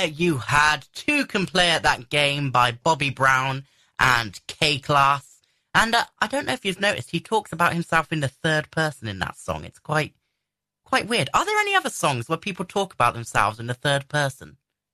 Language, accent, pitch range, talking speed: English, British, 125-180 Hz, 200 wpm